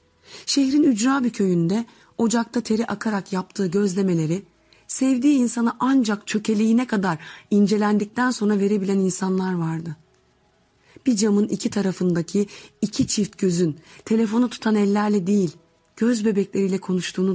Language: Turkish